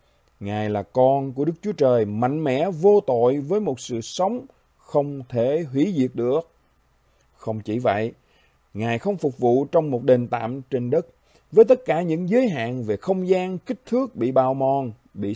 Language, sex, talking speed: Vietnamese, male, 190 wpm